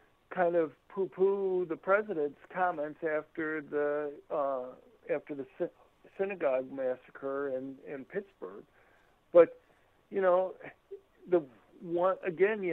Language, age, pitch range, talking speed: English, 60-79, 155-190 Hz, 110 wpm